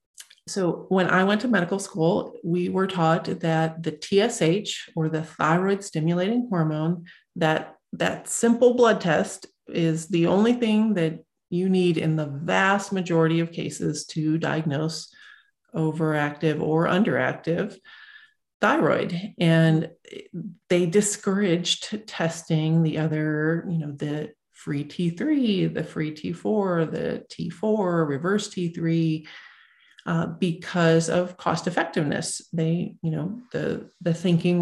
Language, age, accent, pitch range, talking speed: English, 40-59, American, 160-195 Hz, 120 wpm